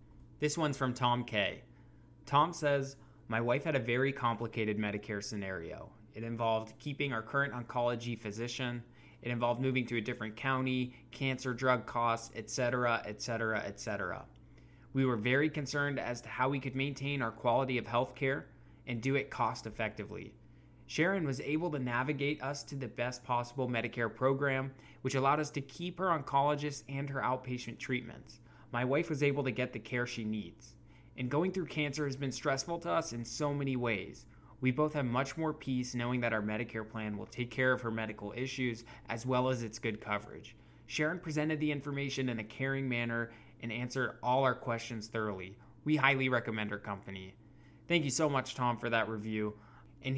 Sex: male